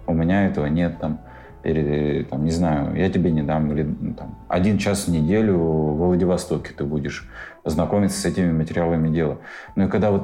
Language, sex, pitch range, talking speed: Russian, male, 80-100 Hz, 180 wpm